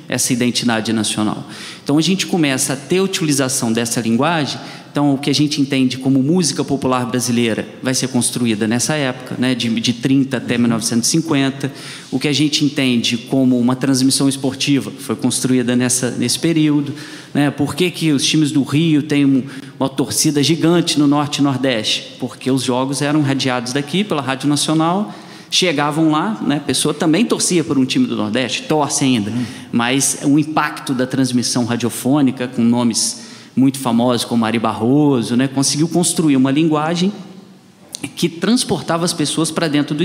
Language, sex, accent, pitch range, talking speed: Portuguese, male, Brazilian, 125-155 Hz, 170 wpm